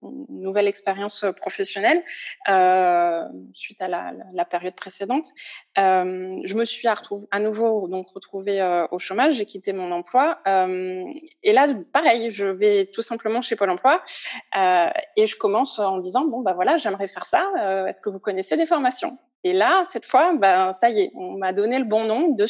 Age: 20-39